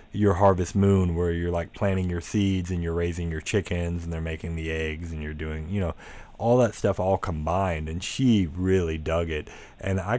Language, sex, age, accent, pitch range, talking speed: English, male, 30-49, American, 85-115 Hz, 210 wpm